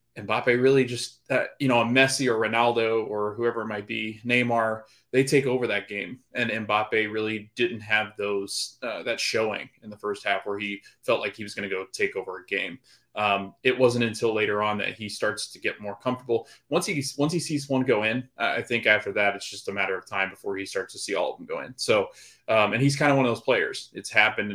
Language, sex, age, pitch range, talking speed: English, male, 20-39, 100-120 Hz, 245 wpm